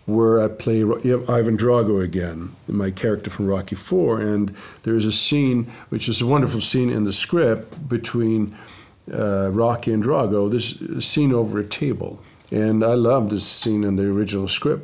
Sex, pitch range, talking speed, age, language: male, 100-115 Hz, 170 wpm, 50-69, English